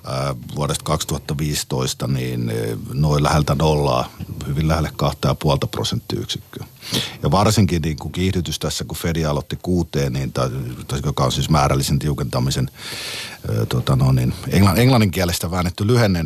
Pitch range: 80-100 Hz